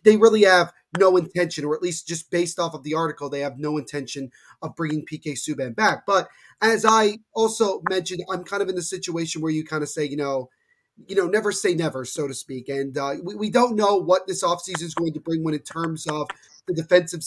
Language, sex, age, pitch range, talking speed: English, male, 30-49, 155-180 Hz, 235 wpm